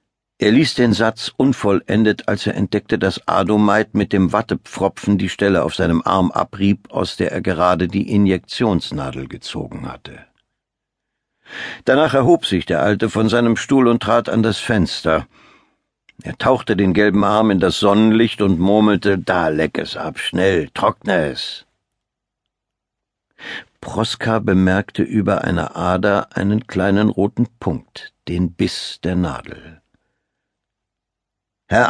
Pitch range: 95-115 Hz